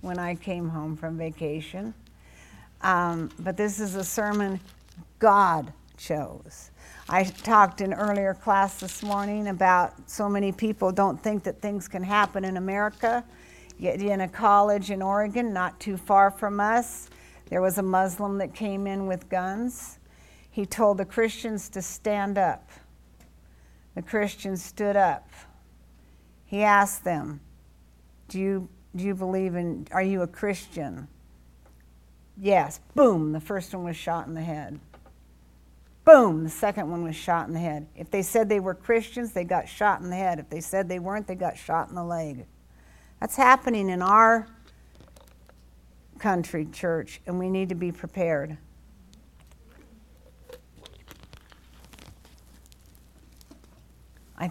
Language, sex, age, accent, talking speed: English, female, 50-69, American, 145 wpm